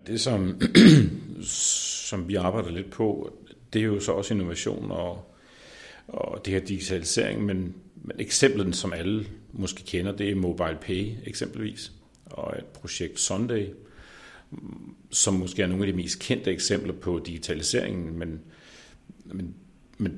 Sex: male